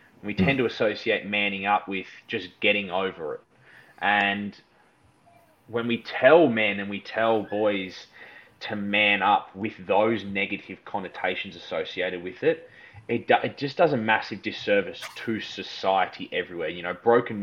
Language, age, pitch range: English, 20-39, 95-115 Hz